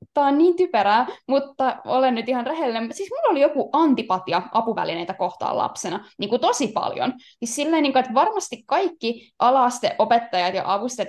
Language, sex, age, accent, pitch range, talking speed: Finnish, female, 10-29, native, 225-290 Hz, 160 wpm